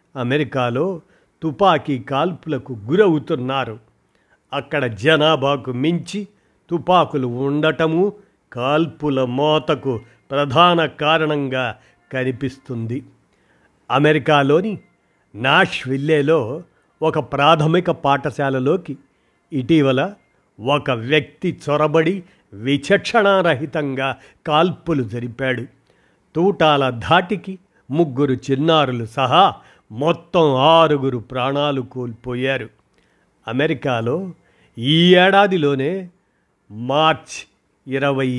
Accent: native